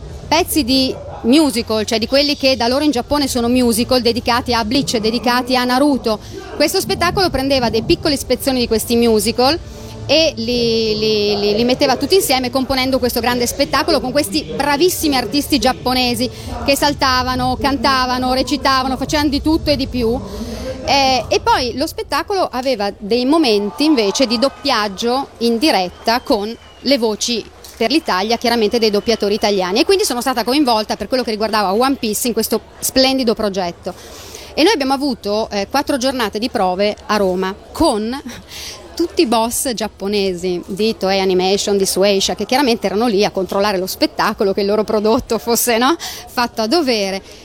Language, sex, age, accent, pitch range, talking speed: Italian, female, 40-59, native, 215-270 Hz, 160 wpm